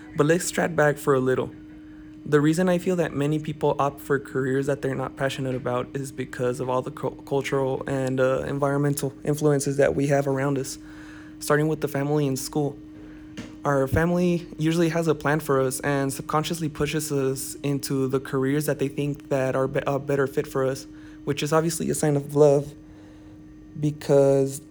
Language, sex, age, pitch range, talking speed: English, male, 20-39, 135-150 Hz, 185 wpm